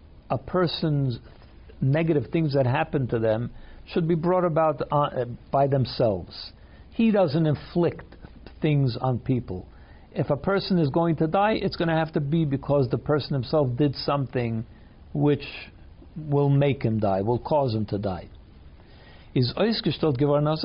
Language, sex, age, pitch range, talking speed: English, male, 60-79, 120-160 Hz, 140 wpm